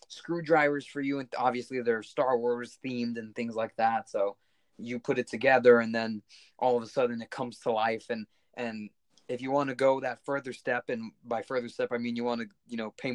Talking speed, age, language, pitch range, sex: 230 wpm, 20-39, English, 110-130 Hz, male